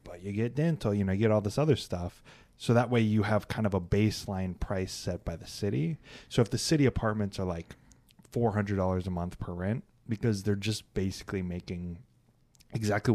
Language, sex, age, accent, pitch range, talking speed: English, male, 20-39, American, 95-120 Hz, 200 wpm